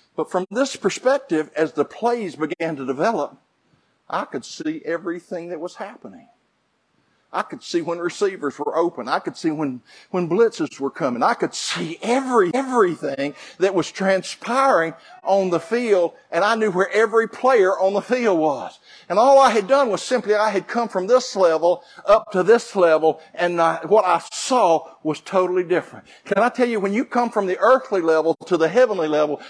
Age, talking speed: 50-69, 190 wpm